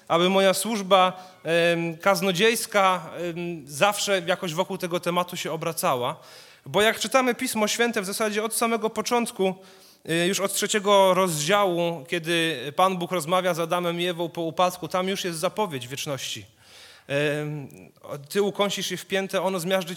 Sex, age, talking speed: male, 30-49, 140 wpm